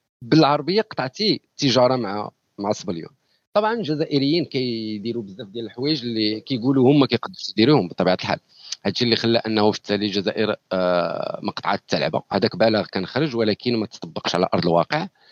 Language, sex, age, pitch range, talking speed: Arabic, male, 50-69, 105-130 Hz, 150 wpm